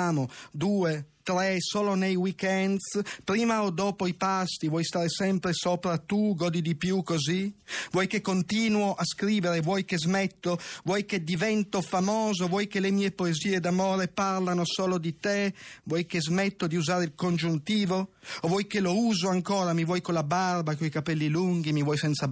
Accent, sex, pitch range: native, male, 150-190 Hz